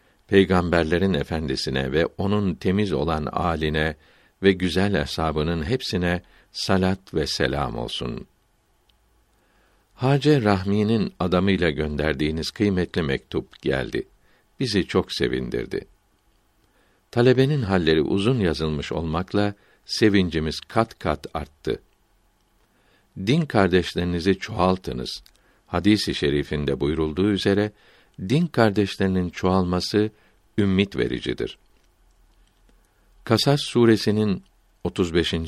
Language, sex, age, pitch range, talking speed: Turkish, male, 60-79, 80-105 Hz, 85 wpm